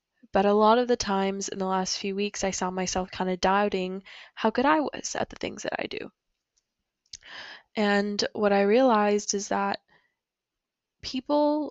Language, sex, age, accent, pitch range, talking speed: English, female, 10-29, American, 200-230 Hz, 175 wpm